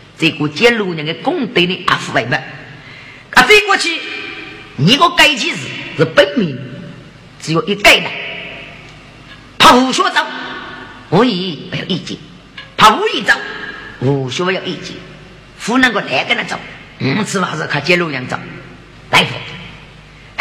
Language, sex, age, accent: Chinese, female, 50-69, American